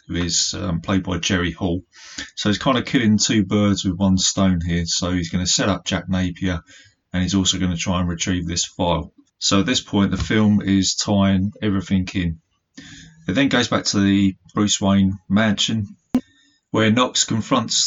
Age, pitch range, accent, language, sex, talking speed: 30-49, 95-110 Hz, British, English, male, 190 wpm